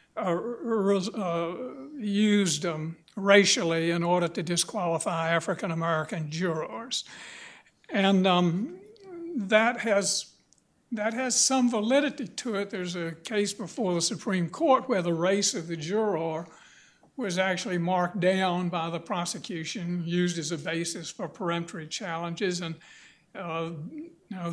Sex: male